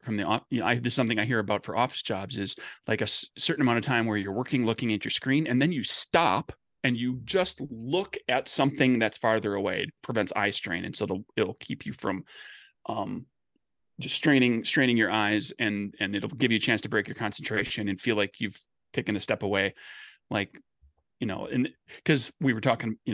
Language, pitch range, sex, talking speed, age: English, 105-135 Hz, male, 225 wpm, 30-49